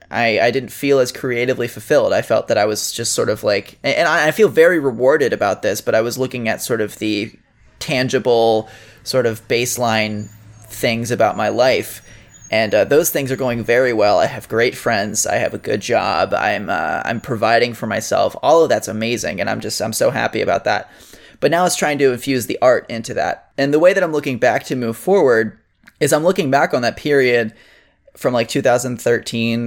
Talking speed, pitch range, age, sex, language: 210 wpm, 115-135 Hz, 20-39, male, English